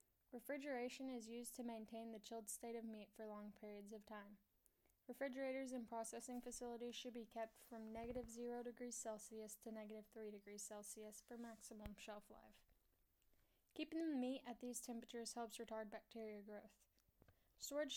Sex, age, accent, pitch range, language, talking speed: female, 10-29, American, 215-245 Hz, English, 155 wpm